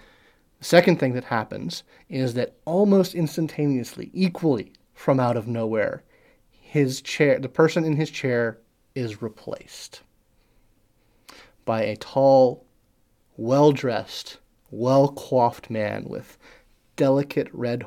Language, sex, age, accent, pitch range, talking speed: English, male, 30-49, American, 110-140 Hz, 105 wpm